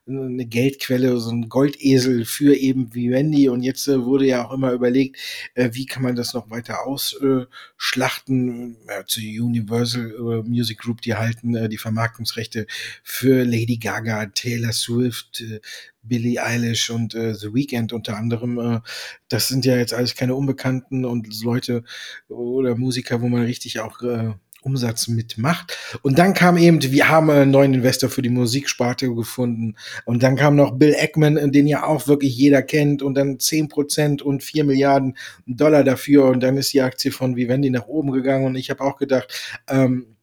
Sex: male